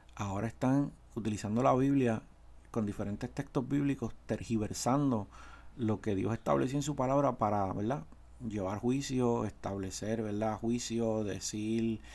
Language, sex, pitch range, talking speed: Spanish, male, 105-135 Hz, 125 wpm